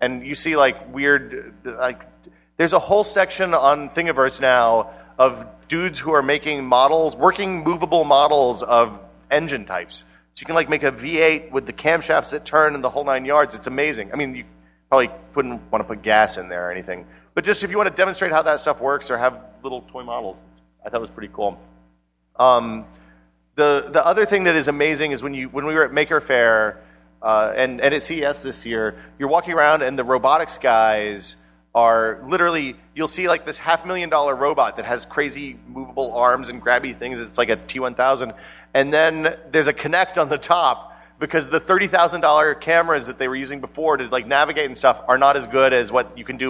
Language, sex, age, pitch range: English, male, 40-59, 115-155 Hz